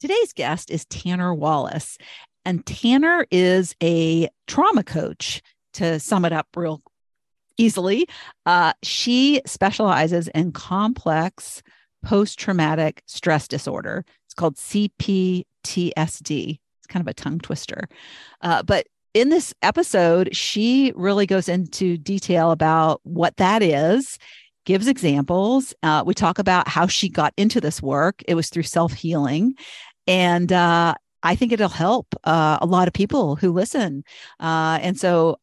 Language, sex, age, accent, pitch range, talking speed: English, female, 50-69, American, 160-205 Hz, 135 wpm